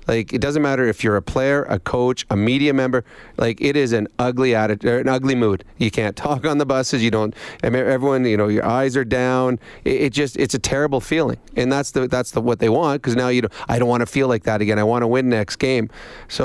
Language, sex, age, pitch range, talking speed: English, male, 40-59, 115-135 Hz, 260 wpm